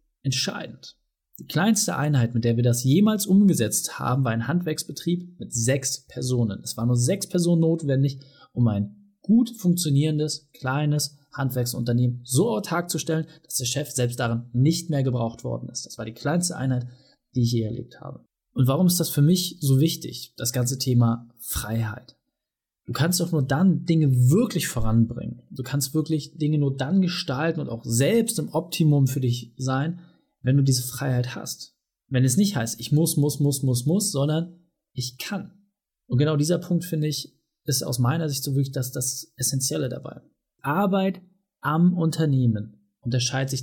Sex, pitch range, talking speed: male, 125-165 Hz, 175 wpm